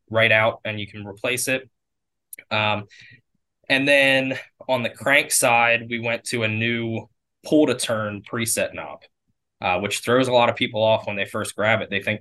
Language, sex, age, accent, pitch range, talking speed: English, male, 20-39, American, 100-120 Hz, 190 wpm